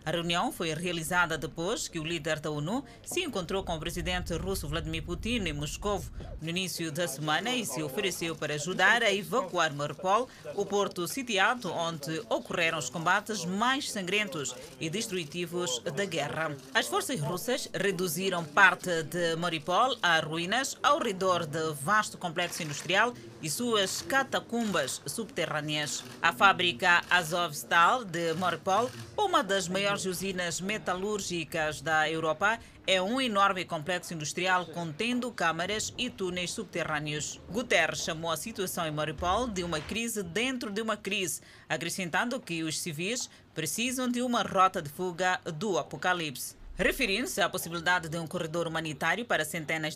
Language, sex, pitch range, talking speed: Portuguese, female, 160-200 Hz, 145 wpm